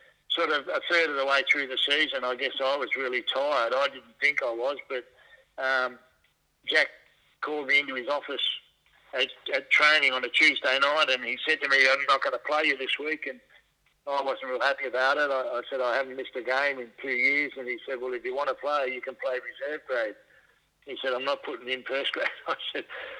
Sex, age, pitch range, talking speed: male, 50-69, 130-160 Hz, 235 wpm